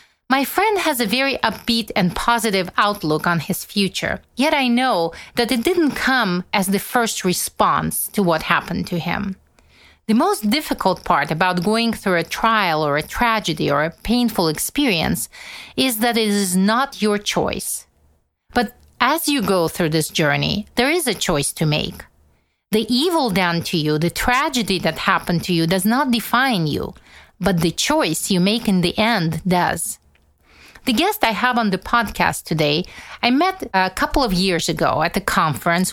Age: 40-59